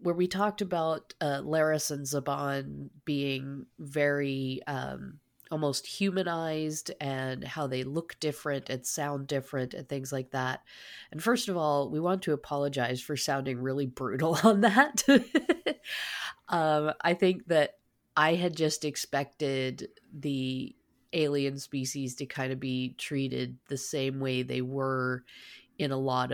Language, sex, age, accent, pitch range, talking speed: English, female, 30-49, American, 130-150 Hz, 145 wpm